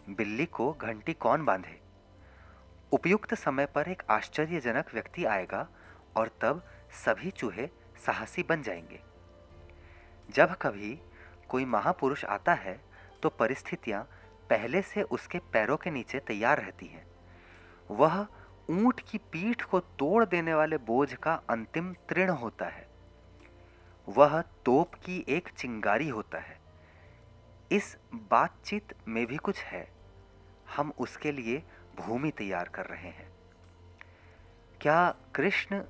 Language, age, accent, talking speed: Hindi, 30-49, native, 120 wpm